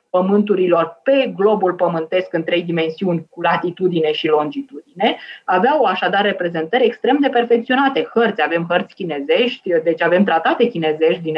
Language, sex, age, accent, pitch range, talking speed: Romanian, female, 20-39, native, 160-220 Hz, 135 wpm